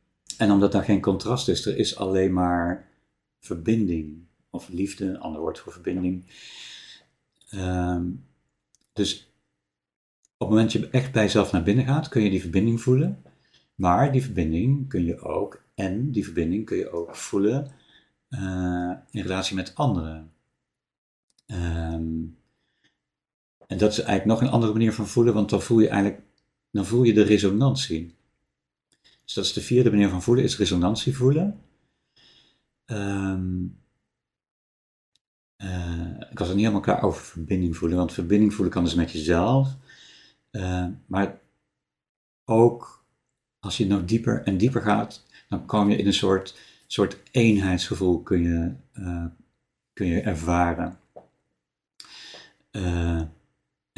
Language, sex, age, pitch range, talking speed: Dutch, male, 50-69, 90-110 Hz, 140 wpm